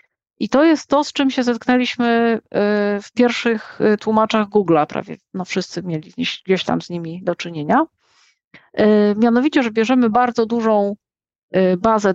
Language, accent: Polish, native